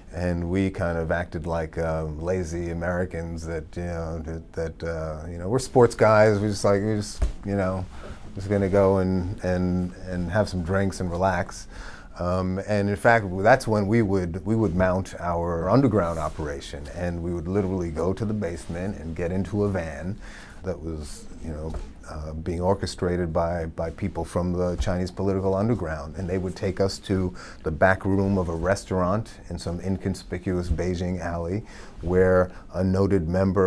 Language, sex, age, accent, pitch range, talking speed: English, male, 30-49, American, 85-100 Hz, 180 wpm